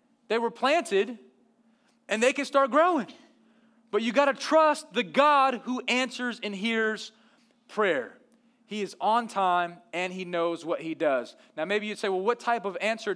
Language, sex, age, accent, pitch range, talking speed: English, male, 30-49, American, 195-245 Hz, 180 wpm